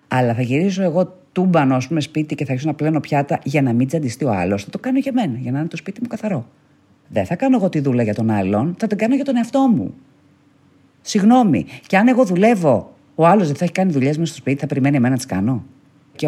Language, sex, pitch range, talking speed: Greek, female, 130-220 Hz, 250 wpm